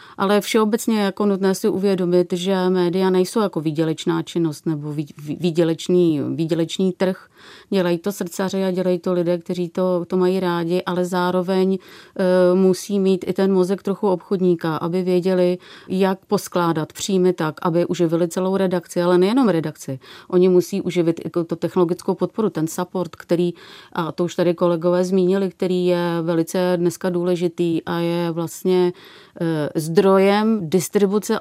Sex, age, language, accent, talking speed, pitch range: female, 30-49, Czech, native, 150 wpm, 175-190 Hz